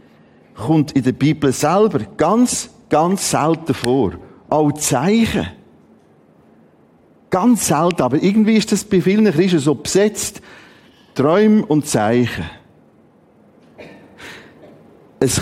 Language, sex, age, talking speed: German, male, 50-69, 105 wpm